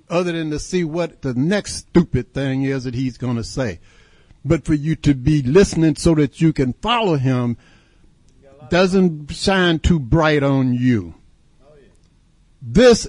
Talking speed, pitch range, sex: 155 wpm, 120-175 Hz, male